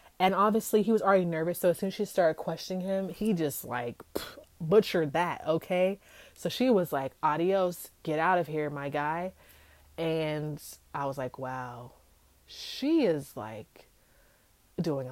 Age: 20-39